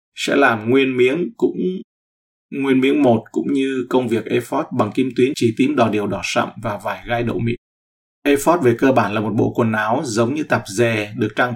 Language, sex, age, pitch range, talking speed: Vietnamese, male, 20-39, 105-130 Hz, 220 wpm